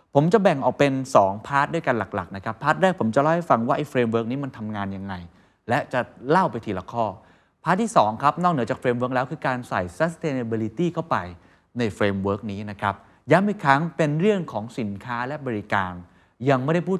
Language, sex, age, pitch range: Thai, male, 20-39, 105-150 Hz